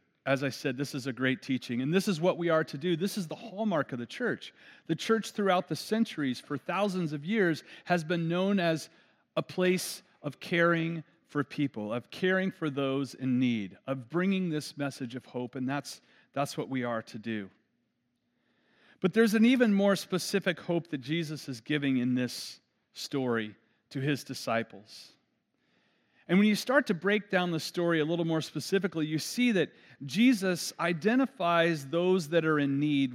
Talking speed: 185 wpm